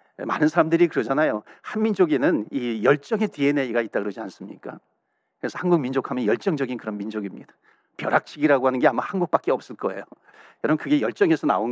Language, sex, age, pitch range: Korean, male, 40-59, 125-195 Hz